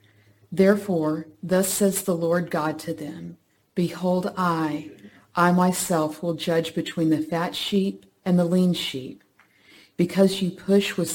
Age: 50-69